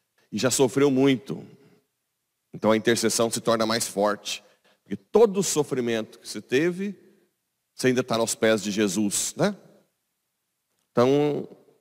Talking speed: 130 wpm